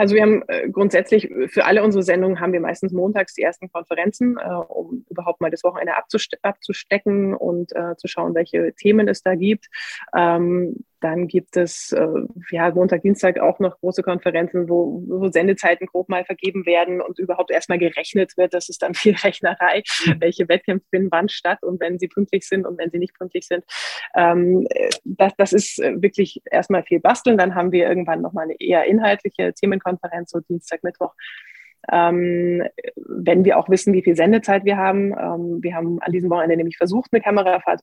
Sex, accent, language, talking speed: female, German, German, 180 wpm